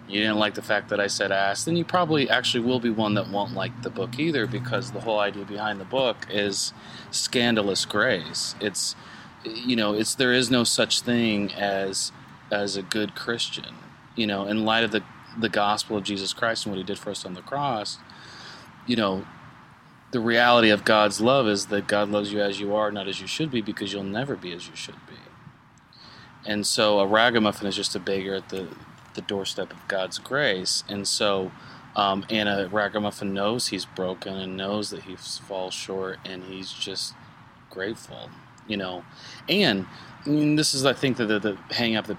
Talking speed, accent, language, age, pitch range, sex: 200 wpm, American, English, 30-49, 100-120 Hz, male